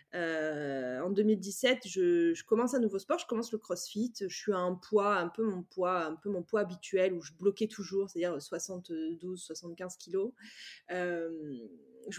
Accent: French